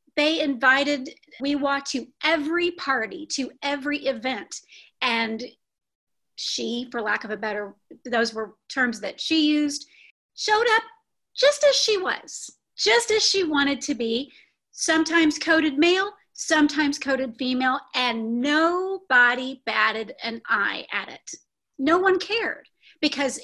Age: 30-49